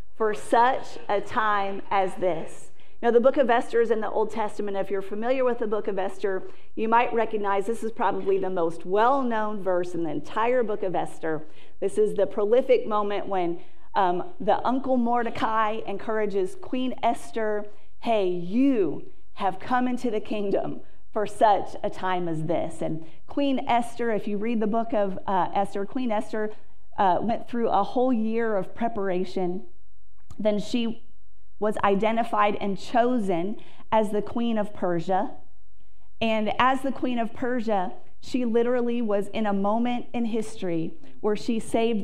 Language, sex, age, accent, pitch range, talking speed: English, female, 40-59, American, 195-235 Hz, 165 wpm